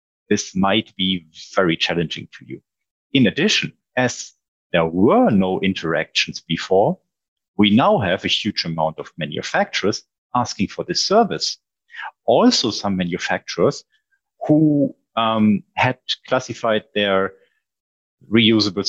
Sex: male